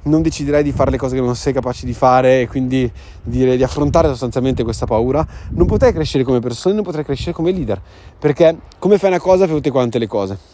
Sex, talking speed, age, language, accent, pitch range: male, 230 wpm, 20-39, Italian, native, 110-145 Hz